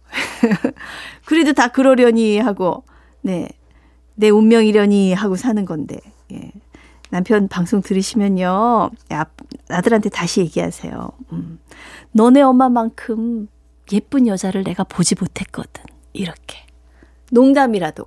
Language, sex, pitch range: Korean, female, 175-250 Hz